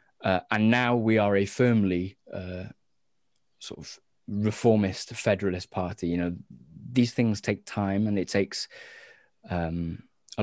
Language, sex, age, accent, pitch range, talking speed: English, male, 20-39, British, 95-110 Hz, 140 wpm